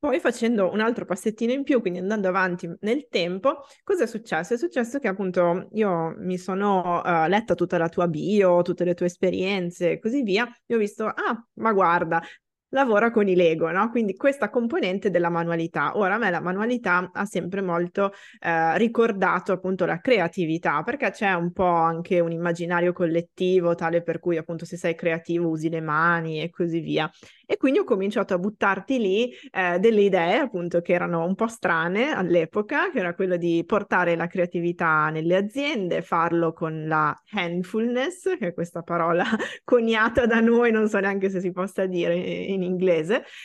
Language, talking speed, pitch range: Italian, 180 wpm, 175-220 Hz